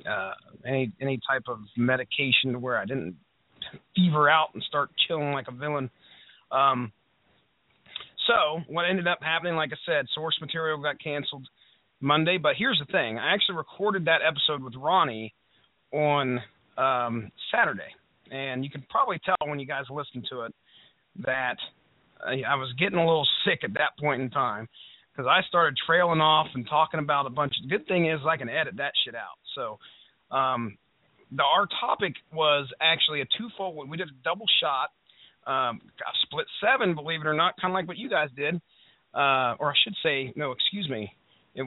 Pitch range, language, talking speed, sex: 135-175 Hz, English, 185 wpm, male